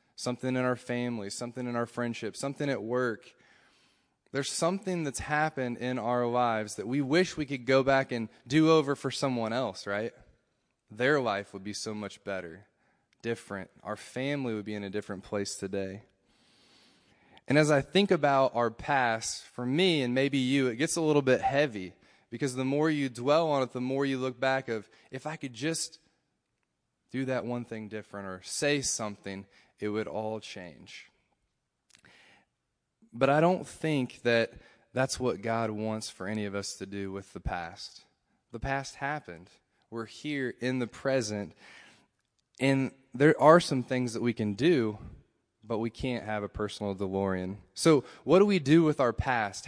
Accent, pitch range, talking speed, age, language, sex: American, 110-140 Hz, 175 wpm, 20-39, English, male